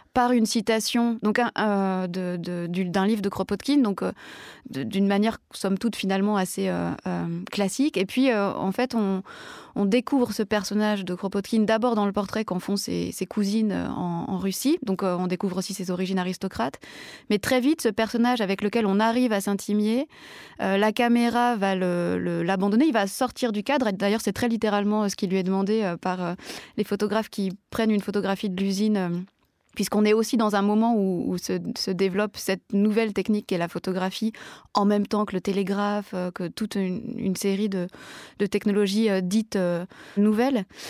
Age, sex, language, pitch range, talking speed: 20-39, female, French, 195-230 Hz, 200 wpm